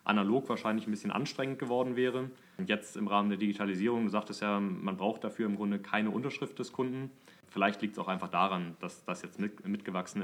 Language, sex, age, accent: German, male, 30-49, German